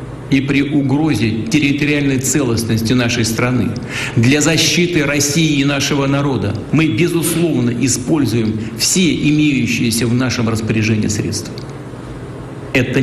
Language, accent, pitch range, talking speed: Russian, native, 120-145 Hz, 105 wpm